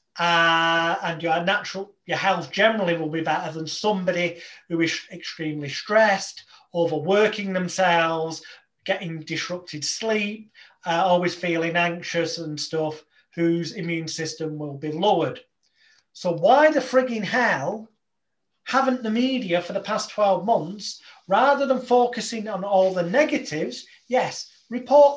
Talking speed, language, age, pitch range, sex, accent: 130 wpm, English, 30-49, 170-220 Hz, male, British